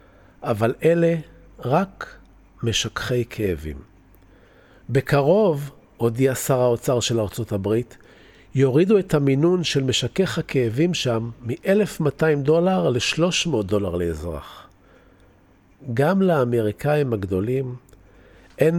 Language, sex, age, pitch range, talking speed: Hebrew, male, 50-69, 105-160 Hz, 90 wpm